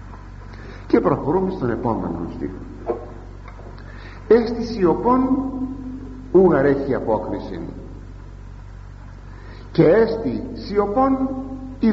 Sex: male